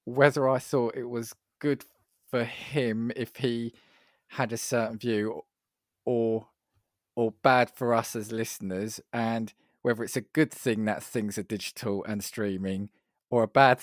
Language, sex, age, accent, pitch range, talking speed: English, male, 20-39, British, 105-135 Hz, 155 wpm